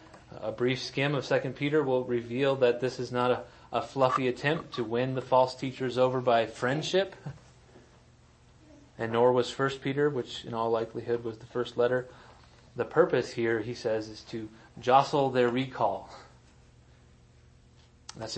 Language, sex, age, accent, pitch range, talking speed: English, male, 30-49, American, 115-130 Hz, 155 wpm